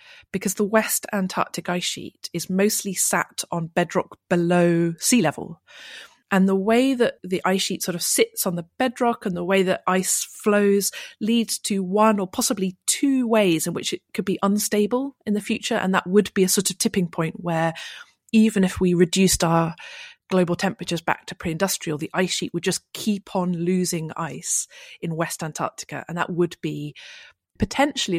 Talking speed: 185 wpm